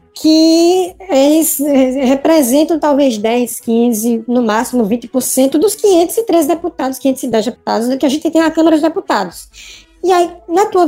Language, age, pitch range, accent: Portuguese, 20-39, 235-345 Hz, Brazilian